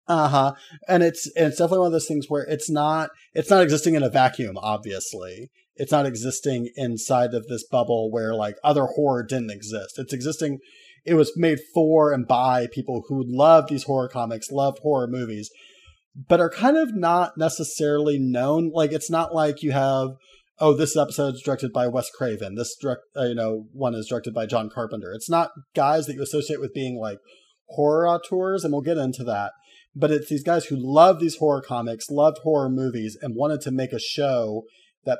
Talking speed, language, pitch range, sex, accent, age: 200 wpm, English, 125-160 Hz, male, American, 30-49